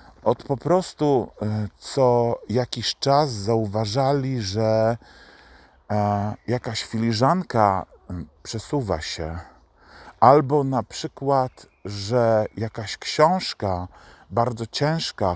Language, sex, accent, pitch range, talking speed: Polish, male, native, 90-125 Hz, 80 wpm